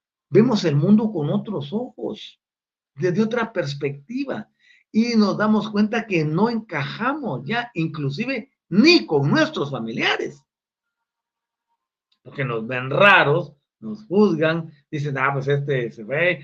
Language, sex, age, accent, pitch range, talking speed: Spanish, male, 50-69, Mexican, 150-235 Hz, 125 wpm